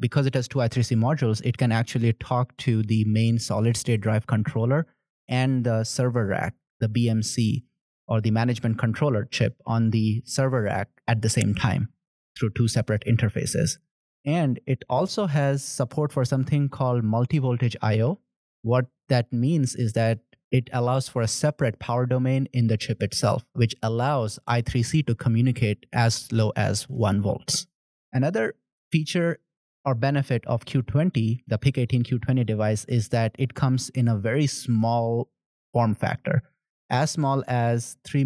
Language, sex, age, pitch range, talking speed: English, male, 30-49, 115-135 Hz, 155 wpm